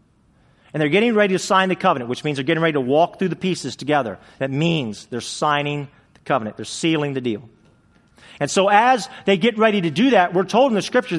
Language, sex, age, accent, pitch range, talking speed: English, male, 40-59, American, 150-225 Hz, 230 wpm